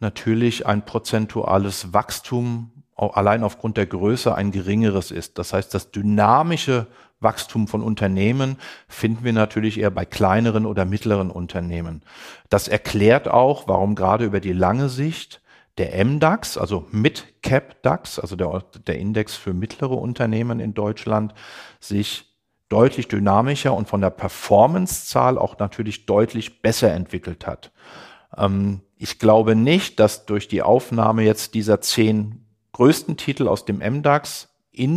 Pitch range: 105-125 Hz